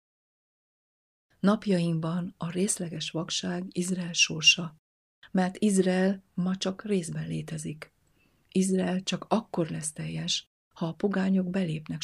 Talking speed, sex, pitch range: 105 wpm, female, 160-190 Hz